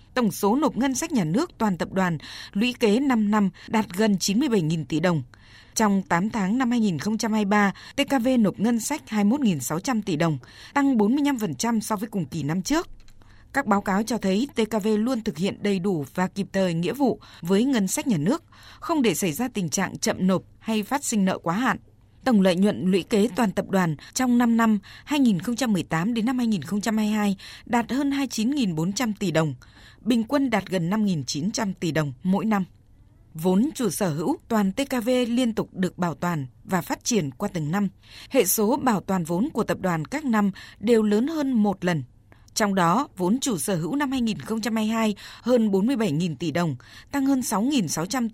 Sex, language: female, Vietnamese